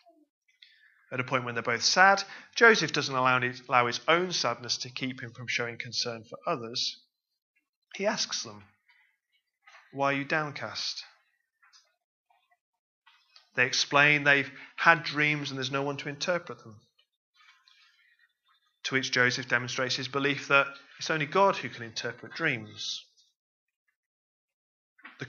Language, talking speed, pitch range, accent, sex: English, 135 wpm, 120-180 Hz, British, male